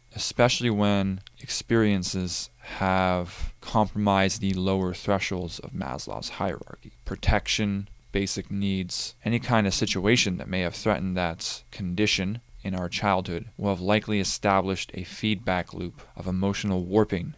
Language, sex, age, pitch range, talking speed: English, male, 20-39, 95-105 Hz, 130 wpm